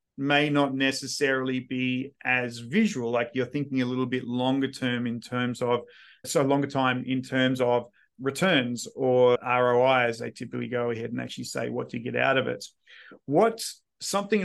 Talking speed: 175 wpm